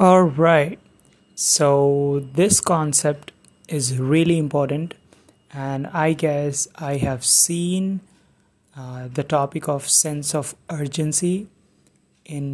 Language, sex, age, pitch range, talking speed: English, male, 30-49, 140-160 Hz, 100 wpm